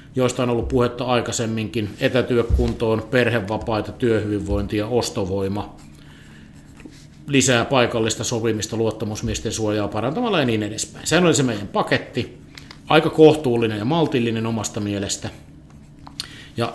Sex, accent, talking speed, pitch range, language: male, native, 110 wpm, 115-150 Hz, Finnish